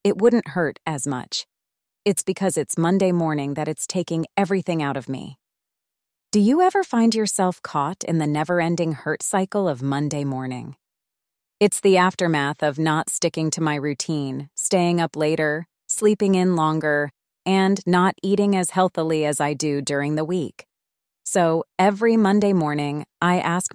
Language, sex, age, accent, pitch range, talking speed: English, female, 30-49, American, 150-200 Hz, 160 wpm